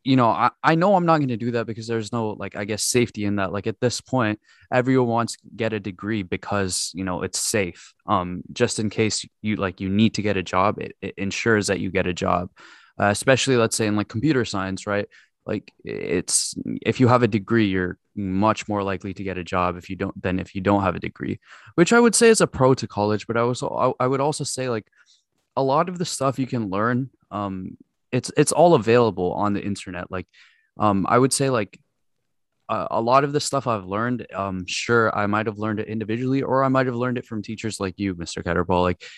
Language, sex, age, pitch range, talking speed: English, male, 20-39, 95-125 Hz, 240 wpm